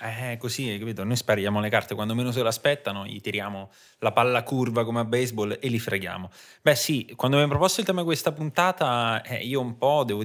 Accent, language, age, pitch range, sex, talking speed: native, Italian, 20-39, 105-135 Hz, male, 230 wpm